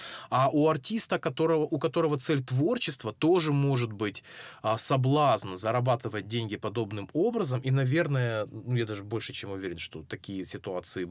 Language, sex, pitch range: Russian, male, 105-135 Hz